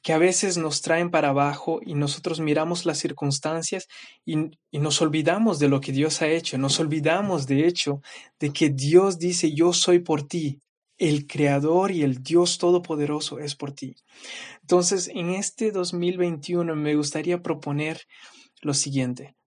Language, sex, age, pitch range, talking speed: Spanish, male, 20-39, 145-175 Hz, 160 wpm